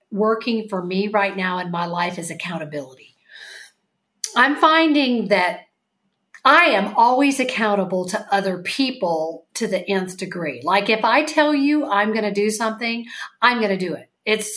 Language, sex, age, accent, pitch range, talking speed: English, female, 50-69, American, 190-255 Hz, 165 wpm